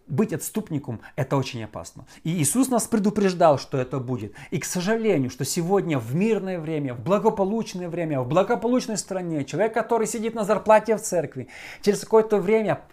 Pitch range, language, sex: 130-190 Hz, Russian, male